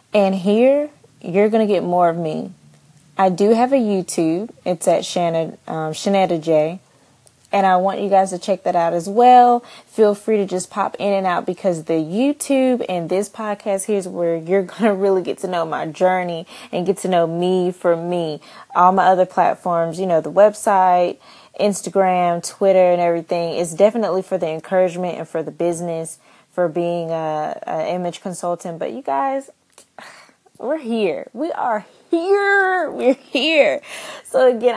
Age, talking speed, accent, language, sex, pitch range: 20-39, 175 wpm, American, English, female, 170-215 Hz